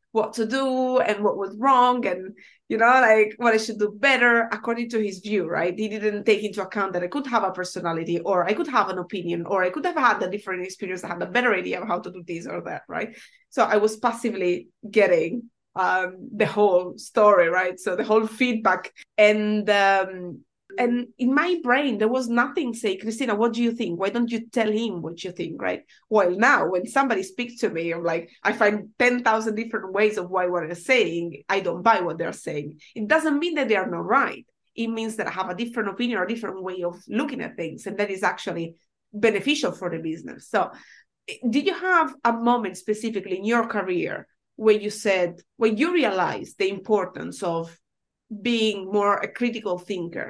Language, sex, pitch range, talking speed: English, female, 185-240 Hz, 215 wpm